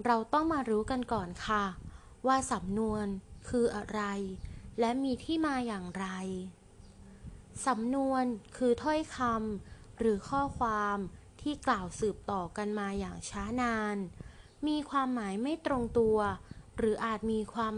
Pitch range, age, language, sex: 195-245 Hz, 20-39, Thai, female